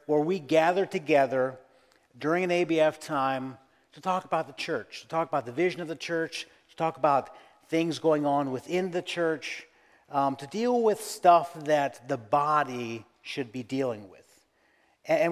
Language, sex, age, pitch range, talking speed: English, male, 50-69, 140-180 Hz, 170 wpm